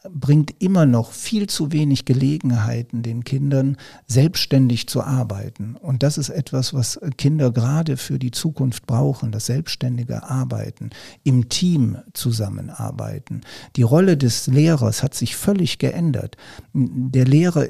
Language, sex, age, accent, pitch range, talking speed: German, male, 60-79, German, 120-140 Hz, 130 wpm